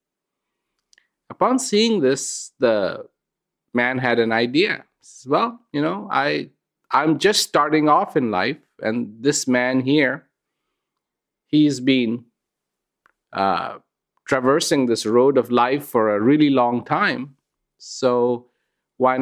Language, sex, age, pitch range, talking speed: English, male, 50-69, 125-160 Hz, 120 wpm